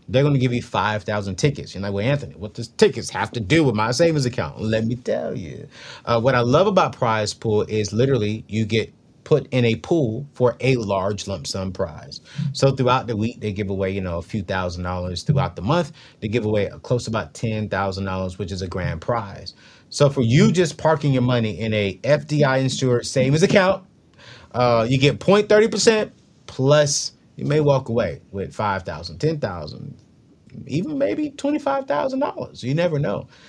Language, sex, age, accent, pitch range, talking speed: English, male, 30-49, American, 100-135 Hz, 190 wpm